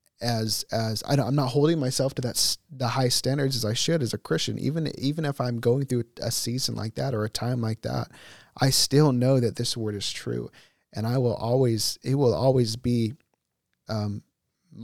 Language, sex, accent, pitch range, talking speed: English, male, American, 115-135 Hz, 205 wpm